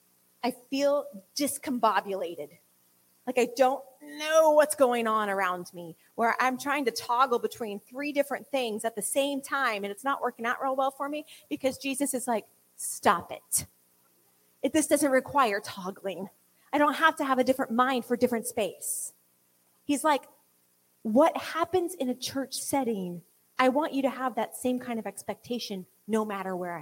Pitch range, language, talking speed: 185-280 Hz, English, 170 wpm